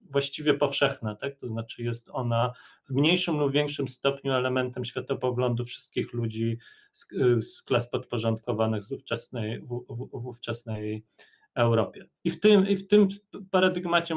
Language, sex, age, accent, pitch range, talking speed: Polish, male, 40-59, native, 115-140 Hz, 135 wpm